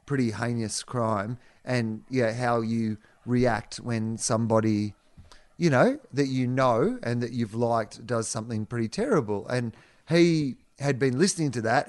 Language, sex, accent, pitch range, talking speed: English, male, Australian, 110-130 Hz, 150 wpm